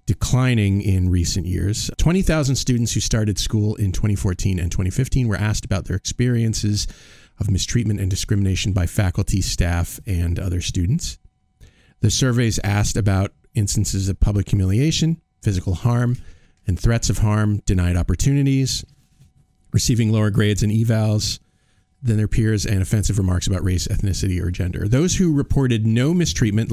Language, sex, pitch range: English, male, 95-120 Hz